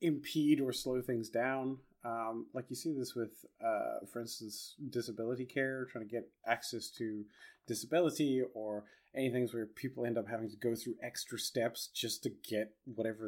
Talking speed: 175 wpm